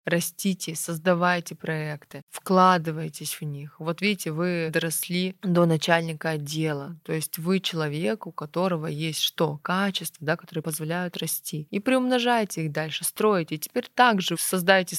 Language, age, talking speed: Russian, 20-39, 140 wpm